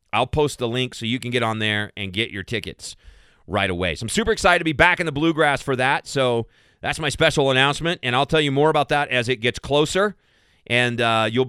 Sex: male